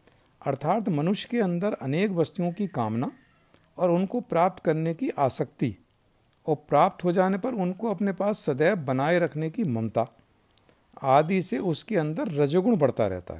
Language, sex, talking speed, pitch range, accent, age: Hindi, male, 150 wpm, 125-185 Hz, native, 50-69